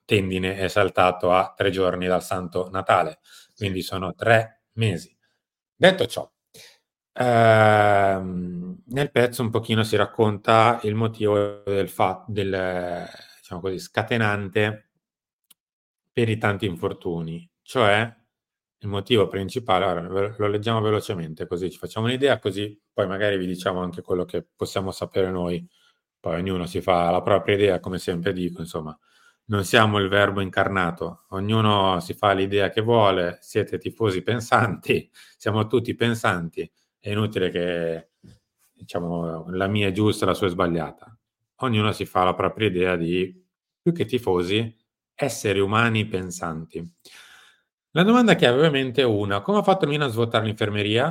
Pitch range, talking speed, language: 90-115 Hz, 145 wpm, Italian